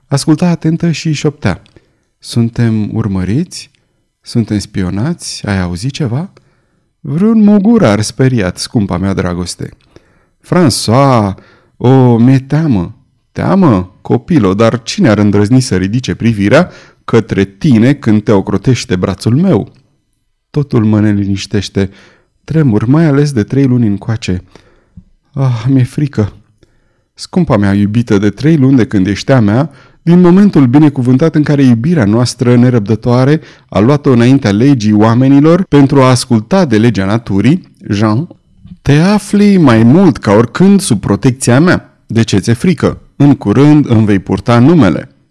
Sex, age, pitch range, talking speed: male, 30-49, 105-140 Hz, 130 wpm